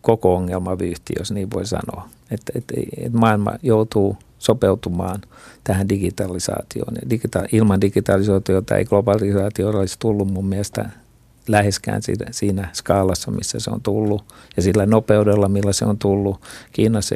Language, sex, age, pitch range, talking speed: Finnish, male, 50-69, 100-110 Hz, 135 wpm